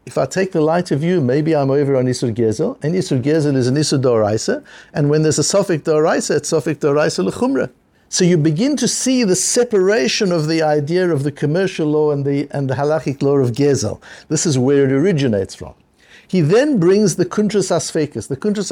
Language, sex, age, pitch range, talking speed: English, male, 60-79, 130-165 Hz, 210 wpm